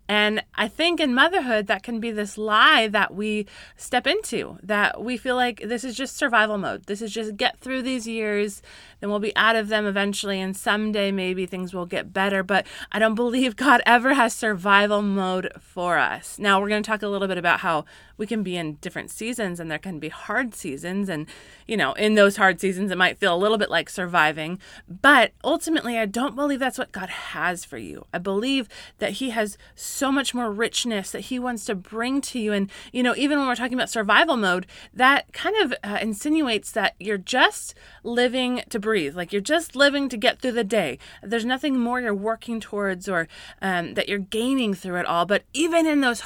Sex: female